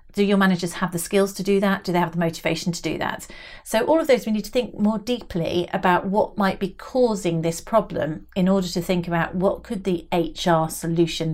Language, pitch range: English, 170-200 Hz